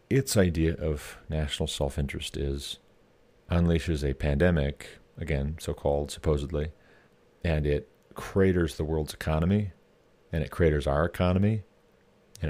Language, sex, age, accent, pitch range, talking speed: English, male, 40-59, American, 75-105 Hz, 115 wpm